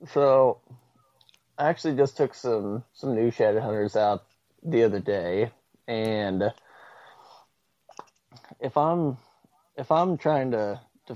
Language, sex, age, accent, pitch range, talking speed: English, male, 20-39, American, 100-120 Hz, 120 wpm